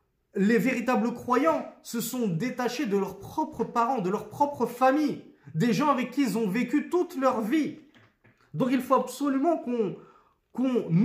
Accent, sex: French, male